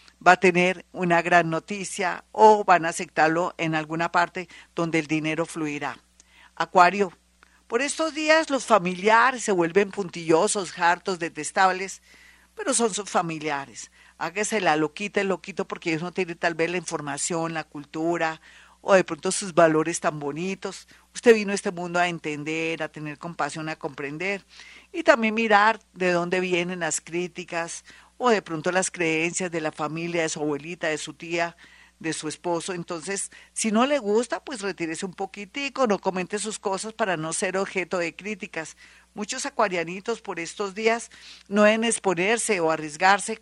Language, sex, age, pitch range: Spanish, female, 50-69, 165-210 Hz